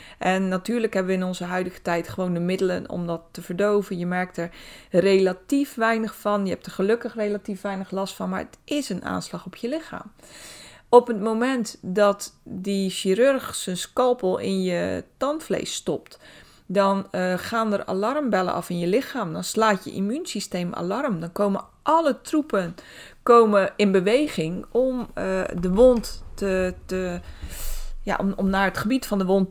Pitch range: 185-225 Hz